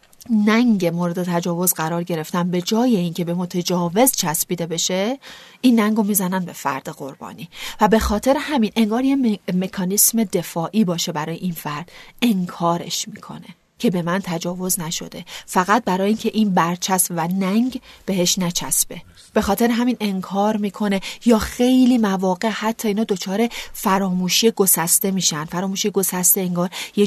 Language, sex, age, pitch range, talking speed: Persian, female, 30-49, 175-215 Hz, 145 wpm